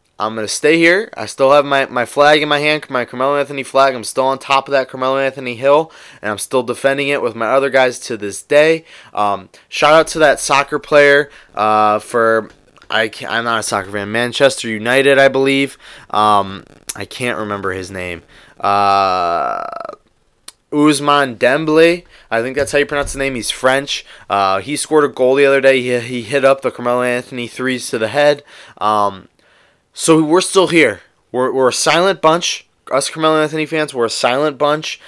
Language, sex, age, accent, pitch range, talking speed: English, male, 20-39, American, 110-145 Hz, 190 wpm